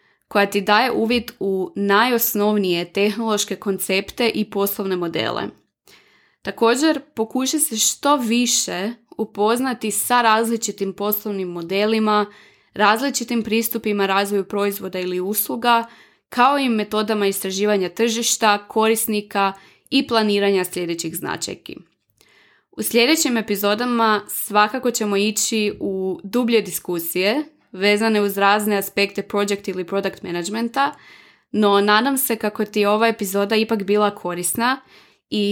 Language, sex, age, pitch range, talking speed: Croatian, female, 20-39, 195-230 Hz, 110 wpm